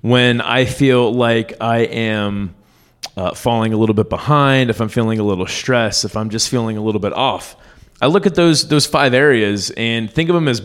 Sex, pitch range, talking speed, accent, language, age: male, 105-130 Hz, 215 wpm, American, English, 20-39